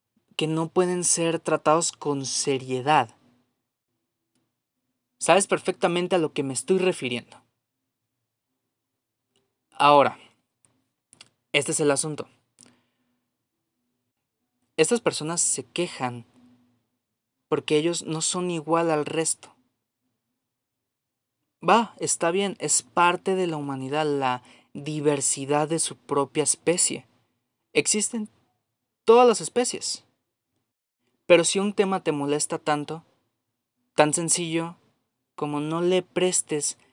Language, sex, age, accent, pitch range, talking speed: Spanish, male, 30-49, Mexican, 125-175 Hz, 100 wpm